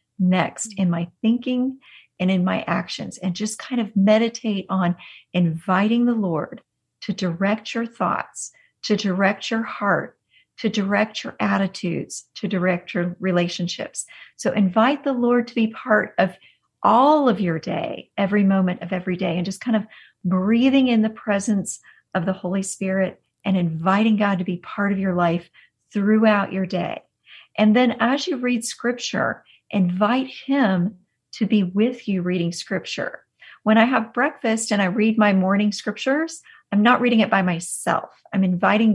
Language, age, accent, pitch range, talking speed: English, 40-59, American, 185-220 Hz, 165 wpm